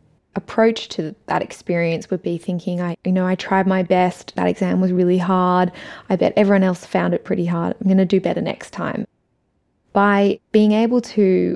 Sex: female